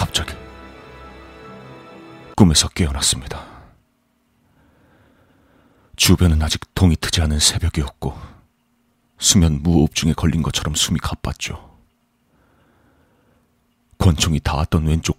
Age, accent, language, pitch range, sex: 40-59, native, Korean, 75-85 Hz, male